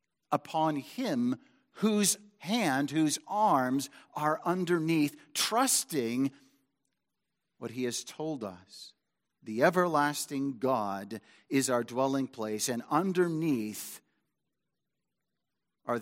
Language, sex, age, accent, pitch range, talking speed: English, male, 50-69, American, 120-160 Hz, 90 wpm